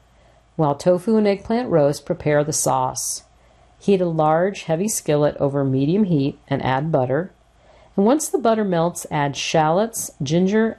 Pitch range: 150-210 Hz